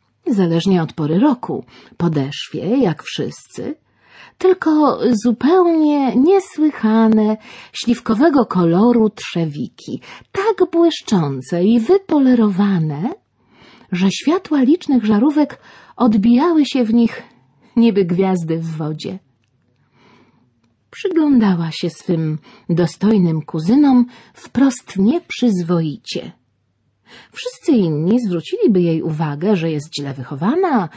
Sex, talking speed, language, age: female, 85 wpm, Polish, 40-59